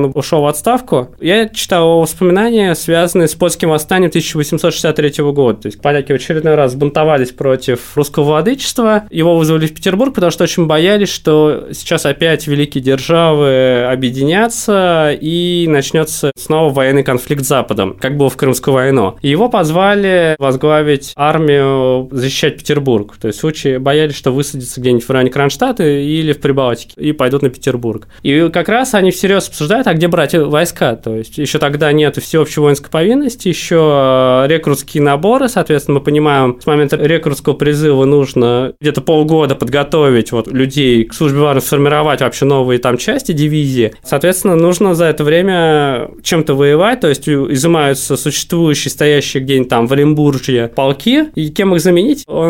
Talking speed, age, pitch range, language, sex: 155 wpm, 20-39, 135-170 Hz, Russian, male